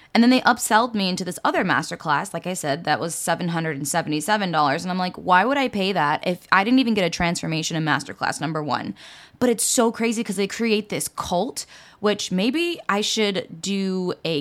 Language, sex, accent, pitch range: English, female, American, 170-255 Hz